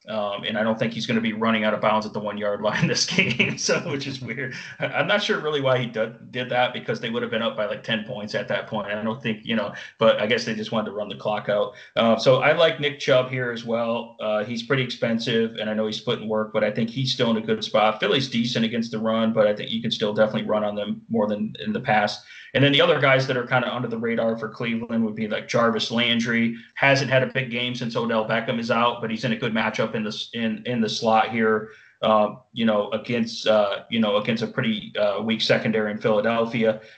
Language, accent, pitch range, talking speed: English, American, 110-125 Hz, 270 wpm